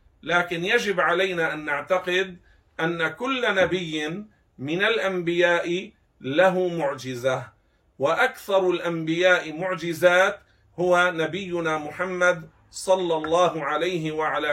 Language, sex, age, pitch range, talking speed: Arabic, male, 50-69, 155-190 Hz, 90 wpm